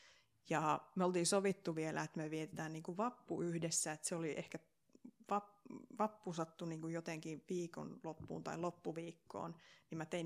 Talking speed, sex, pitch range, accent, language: 165 wpm, female, 165-210 Hz, native, Finnish